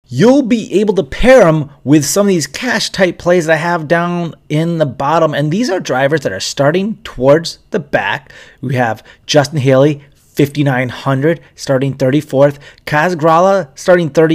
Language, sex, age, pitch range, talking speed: English, male, 30-49, 140-170 Hz, 165 wpm